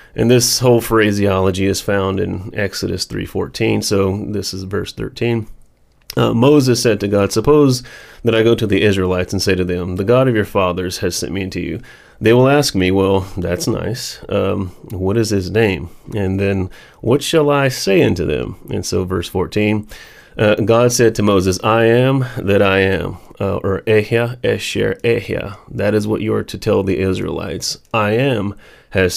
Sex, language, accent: male, English, American